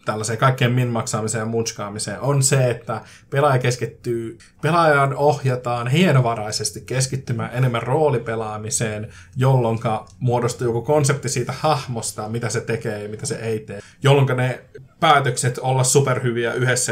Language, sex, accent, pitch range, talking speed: Finnish, male, native, 110-130 Hz, 125 wpm